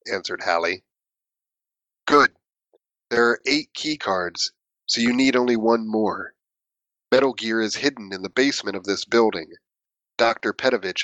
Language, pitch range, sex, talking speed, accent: English, 105-125 Hz, male, 140 wpm, American